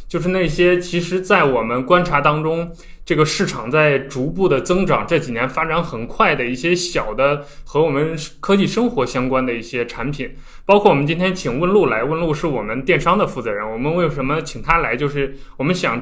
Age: 20-39